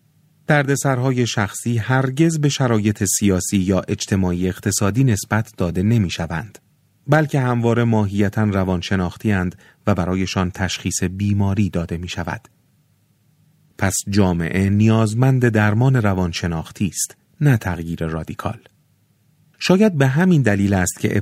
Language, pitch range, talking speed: Persian, 95-125 Hz, 105 wpm